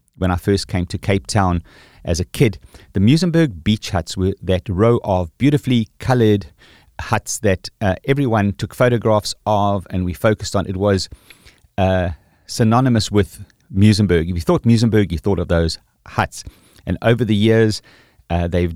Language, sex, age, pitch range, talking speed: English, male, 30-49, 90-110 Hz, 165 wpm